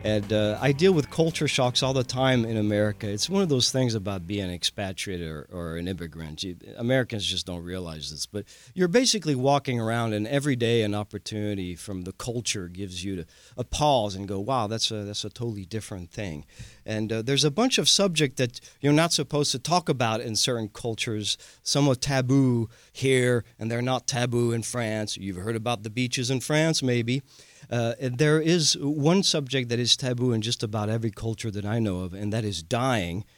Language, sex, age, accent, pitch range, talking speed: English, male, 40-59, American, 105-135 Hz, 210 wpm